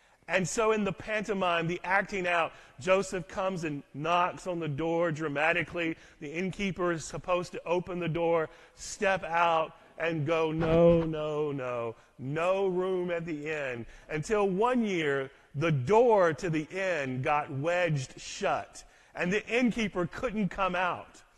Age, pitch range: 40-59, 155-195 Hz